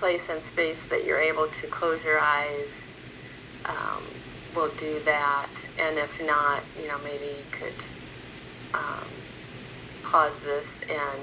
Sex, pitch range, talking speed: female, 140-165 Hz, 140 wpm